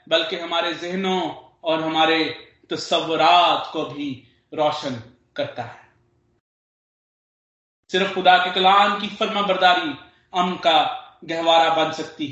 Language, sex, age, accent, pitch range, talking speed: Hindi, male, 40-59, native, 165-210 Hz, 100 wpm